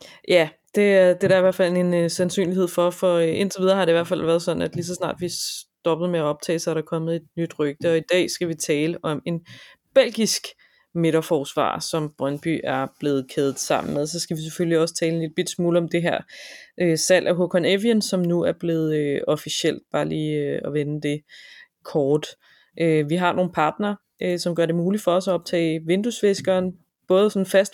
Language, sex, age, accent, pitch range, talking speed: Danish, female, 20-39, native, 165-185 Hz, 225 wpm